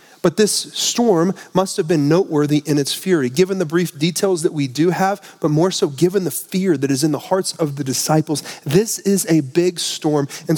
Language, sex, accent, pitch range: English, male, American, 145-185 Hz